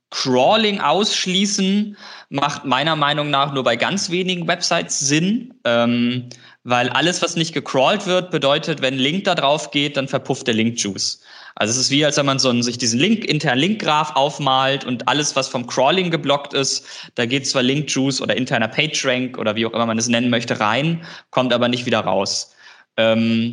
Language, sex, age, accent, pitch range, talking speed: German, male, 20-39, German, 120-145 Hz, 190 wpm